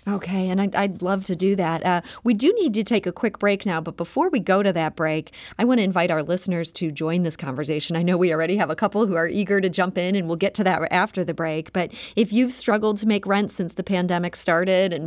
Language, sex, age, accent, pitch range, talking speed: English, female, 30-49, American, 165-205 Hz, 270 wpm